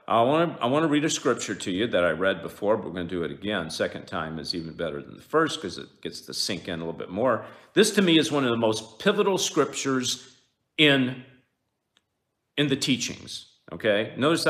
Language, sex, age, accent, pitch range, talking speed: English, male, 50-69, American, 110-155 Hz, 225 wpm